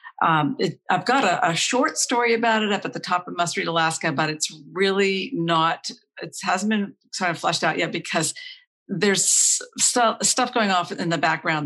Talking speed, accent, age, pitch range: 200 wpm, American, 50-69, 160-210 Hz